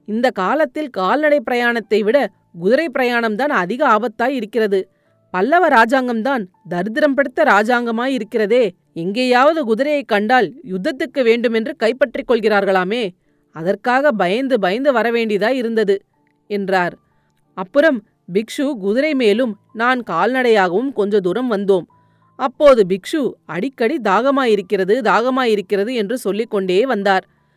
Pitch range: 190-250 Hz